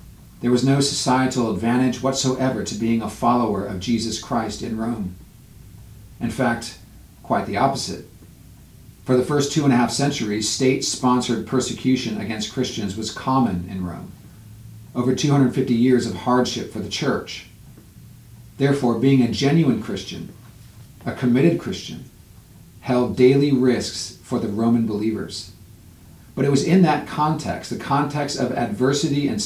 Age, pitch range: 40-59, 105-130 Hz